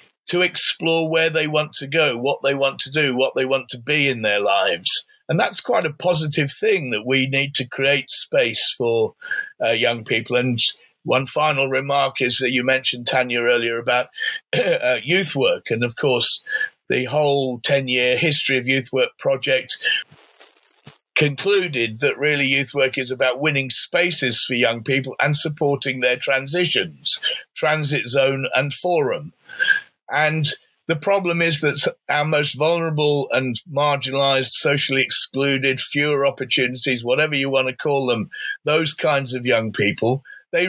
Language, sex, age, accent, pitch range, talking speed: English, male, 50-69, British, 130-160 Hz, 160 wpm